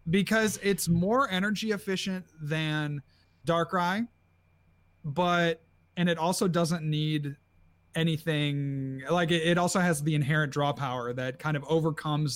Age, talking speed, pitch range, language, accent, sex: 30-49, 125 wpm, 140-175 Hz, English, American, male